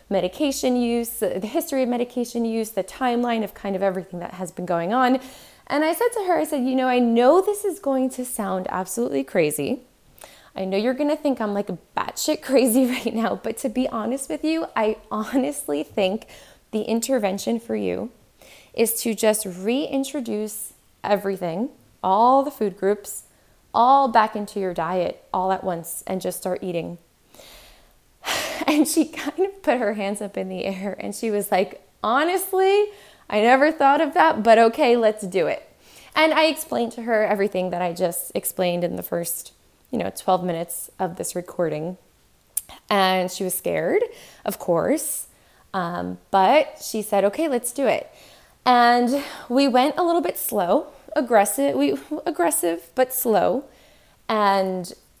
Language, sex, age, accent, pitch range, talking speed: English, female, 20-39, American, 190-275 Hz, 170 wpm